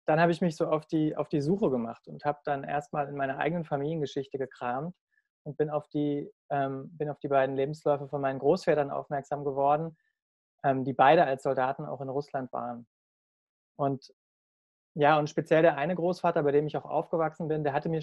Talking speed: 185 wpm